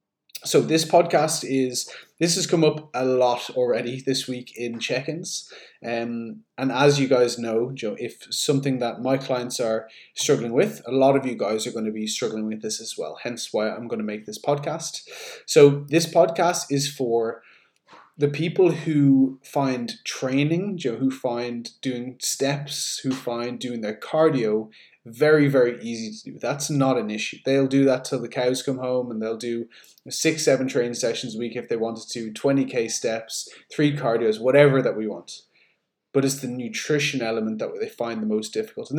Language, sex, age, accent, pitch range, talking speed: English, male, 20-39, Irish, 115-145 Hz, 190 wpm